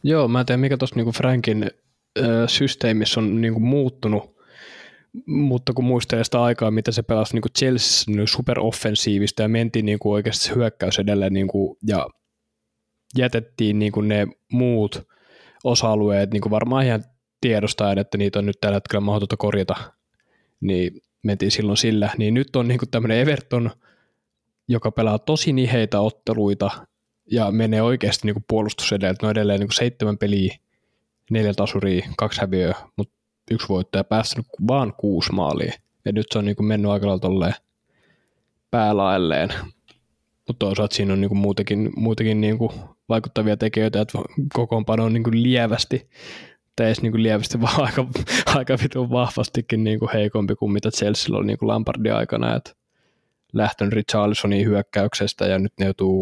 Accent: native